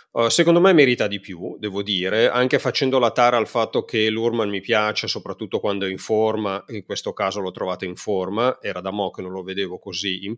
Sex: male